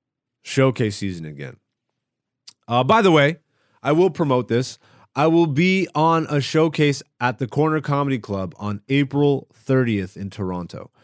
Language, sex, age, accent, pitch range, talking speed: English, male, 20-39, American, 105-145 Hz, 145 wpm